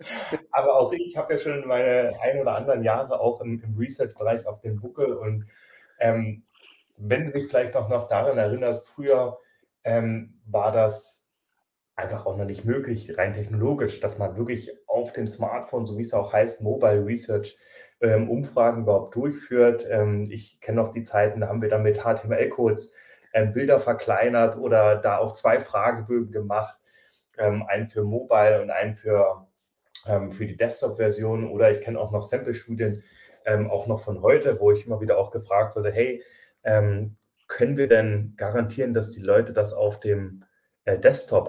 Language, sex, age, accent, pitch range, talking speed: German, male, 30-49, German, 105-120 Hz, 170 wpm